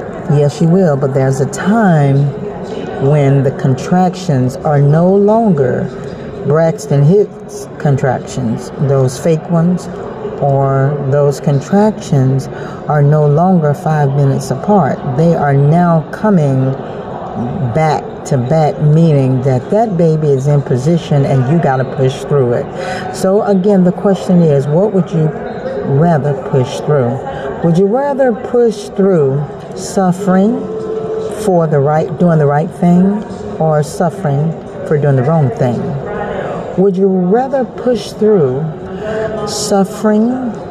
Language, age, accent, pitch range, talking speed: English, 50-69, American, 145-200 Hz, 125 wpm